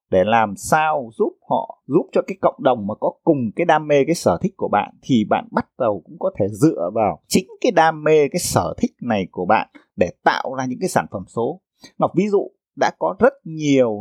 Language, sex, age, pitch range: Vietnamese, male, 20-39, 135-215 Hz